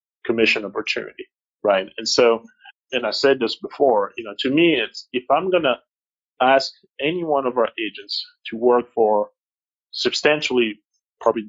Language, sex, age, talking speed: English, male, 30-49, 150 wpm